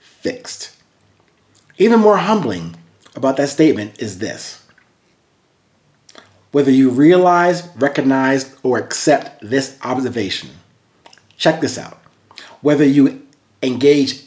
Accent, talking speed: American, 95 wpm